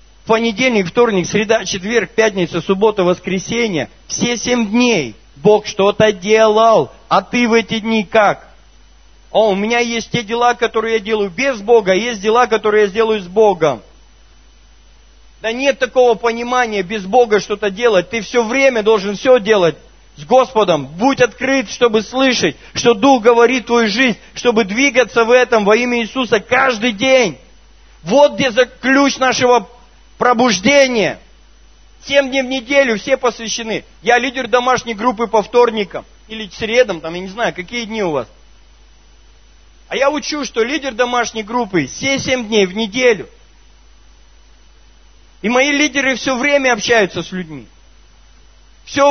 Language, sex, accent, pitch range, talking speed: Russian, male, native, 205-255 Hz, 145 wpm